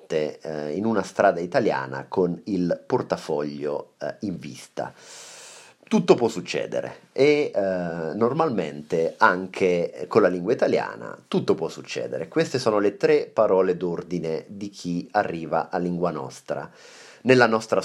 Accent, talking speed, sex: native, 125 wpm, male